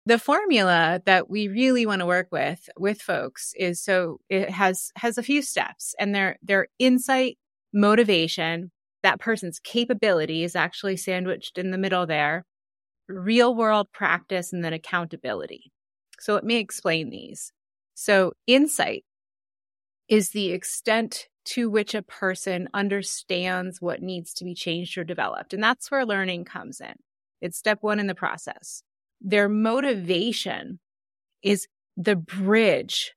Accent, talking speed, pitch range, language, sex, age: American, 145 wpm, 180-225 Hz, English, female, 30-49